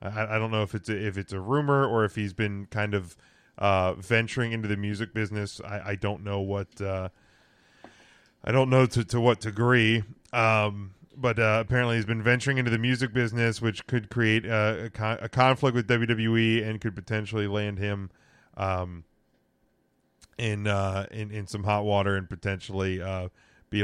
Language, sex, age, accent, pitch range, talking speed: English, male, 10-29, American, 100-115 Hz, 185 wpm